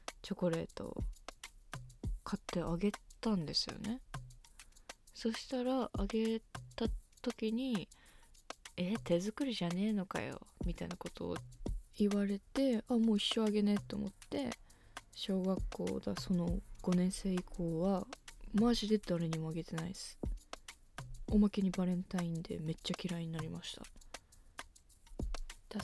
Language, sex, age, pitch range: Japanese, female, 20-39, 175-215 Hz